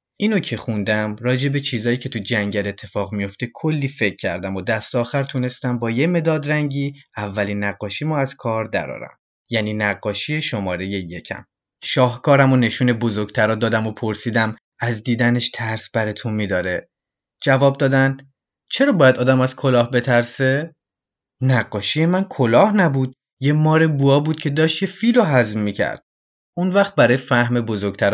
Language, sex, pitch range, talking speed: Persian, male, 105-140 Hz, 150 wpm